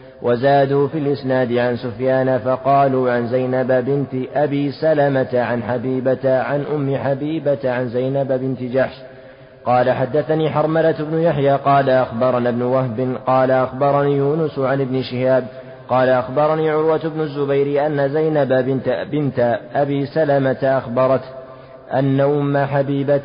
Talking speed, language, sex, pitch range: 130 wpm, Arabic, male, 130-140 Hz